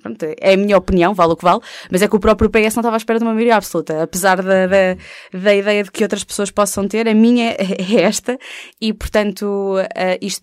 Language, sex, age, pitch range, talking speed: Portuguese, female, 20-39, 180-215 Hz, 225 wpm